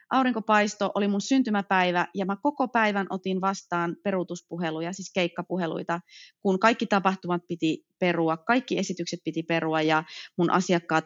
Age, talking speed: 30-49, 135 wpm